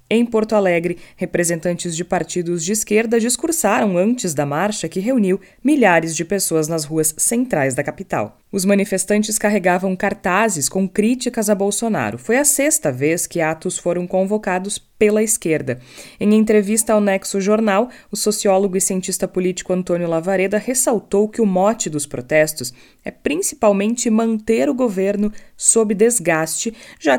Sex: female